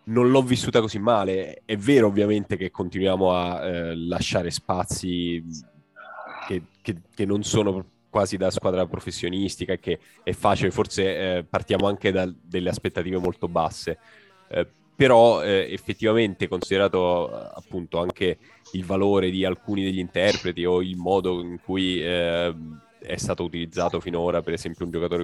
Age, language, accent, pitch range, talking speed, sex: 10-29, Italian, native, 90-100 Hz, 145 wpm, male